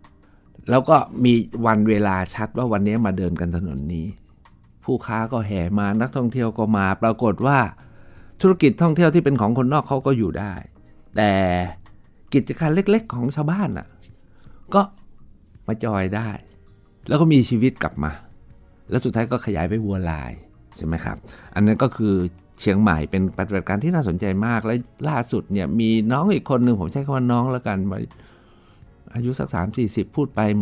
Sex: male